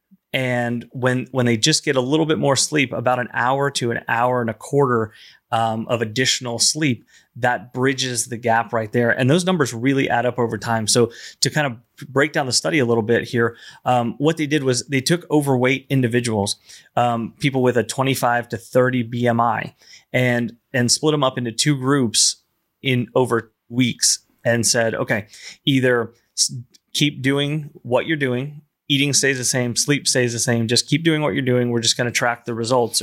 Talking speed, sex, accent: 195 wpm, male, American